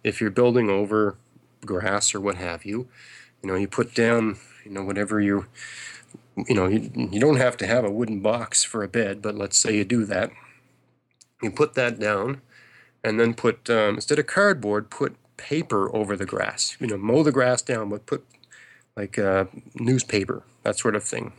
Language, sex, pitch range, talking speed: English, male, 100-125 Hz, 195 wpm